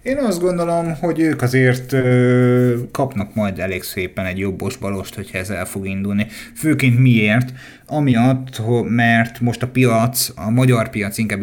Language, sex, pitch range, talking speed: Hungarian, male, 100-125 Hz, 150 wpm